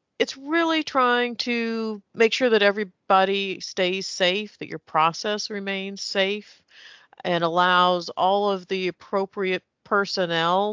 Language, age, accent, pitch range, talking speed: English, 50-69, American, 180-220 Hz, 125 wpm